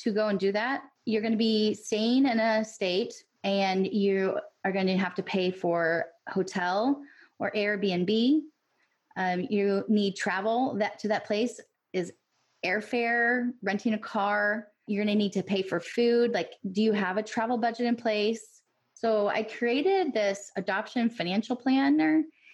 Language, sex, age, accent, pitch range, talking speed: English, female, 20-39, American, 195-235 Hz, 165 wpm